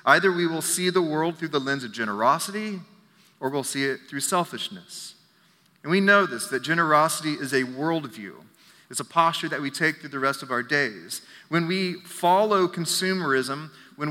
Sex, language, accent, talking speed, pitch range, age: male, English, American, 185 wpm, 145-180 Hz, 30-49